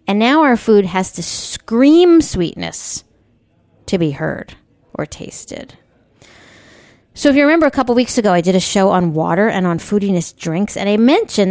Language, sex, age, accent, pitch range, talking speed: English, female, 40-59, American, 175-235 Hz, 180 wpm